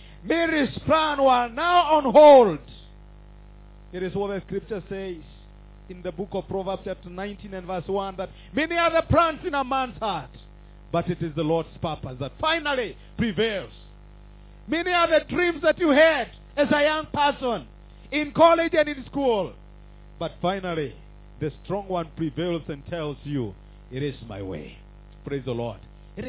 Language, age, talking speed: English, 50-69, 165 wpm